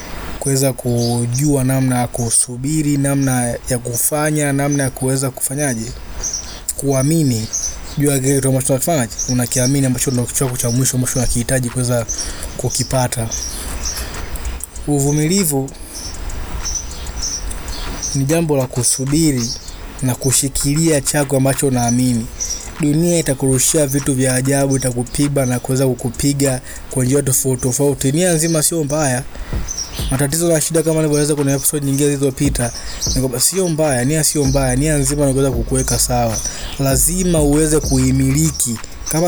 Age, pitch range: 20-39, 120-145 Hz